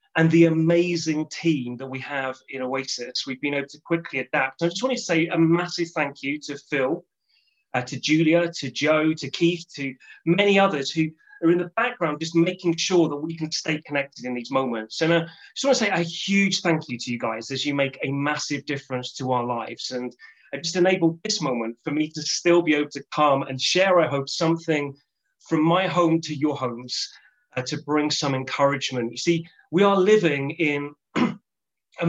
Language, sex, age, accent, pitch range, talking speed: English, male, 30-49, British, 140-175 Hz, 210 wpm